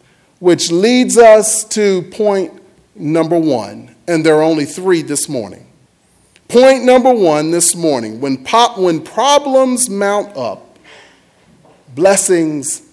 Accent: American